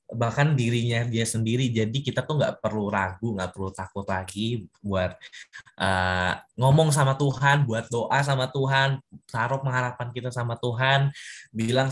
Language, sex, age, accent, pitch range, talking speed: Indonesian, male, 10-29, native, 115-140 Hz, 145 wpm